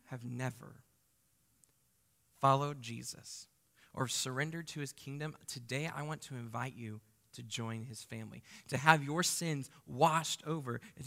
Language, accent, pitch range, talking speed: English, American, 130-175 Hz, 140 wpm